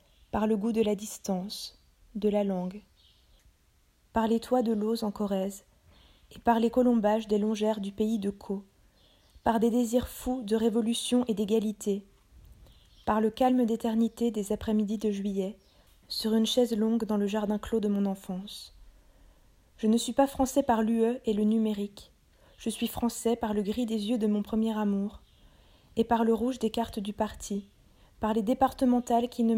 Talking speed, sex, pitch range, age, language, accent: 180 wpm, female, 205-230 Hz, 20-39, French, French